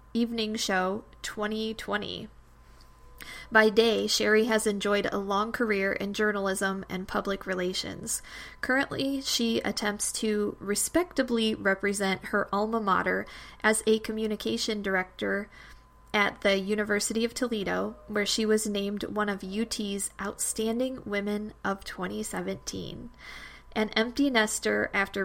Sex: female